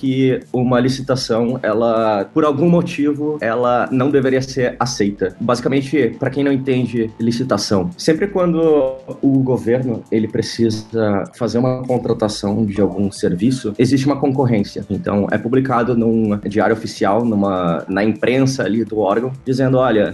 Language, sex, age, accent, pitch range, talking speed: Portuguese, male, 20-39, Brazilian, 115-145 Hz, 140 wpm